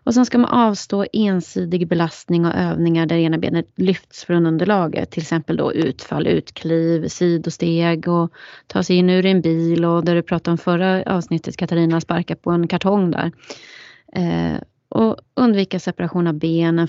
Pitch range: 165-190 Hz